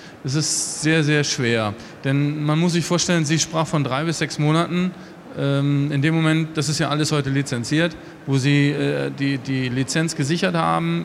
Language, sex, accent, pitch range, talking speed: German, male, German, 140-165 Hz, 180 wpm